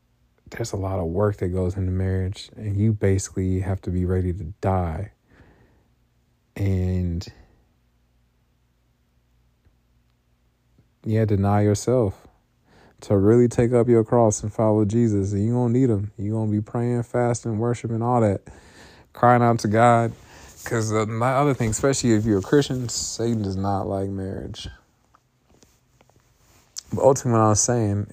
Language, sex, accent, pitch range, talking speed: English, male, American, 95-120 Hz, 150 wpm